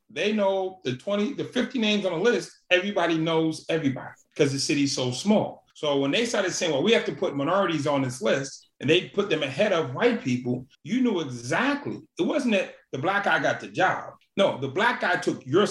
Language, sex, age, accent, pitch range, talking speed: English, male, 30-49, American, 140-205 Hz, 220 wpm